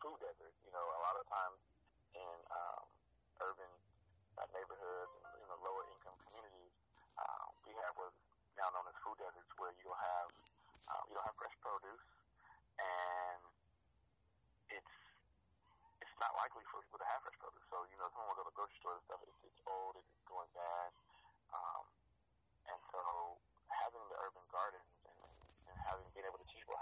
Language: English